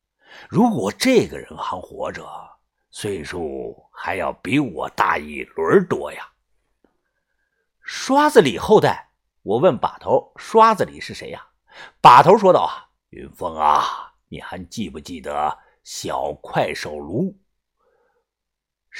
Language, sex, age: Chinese, male, 50-69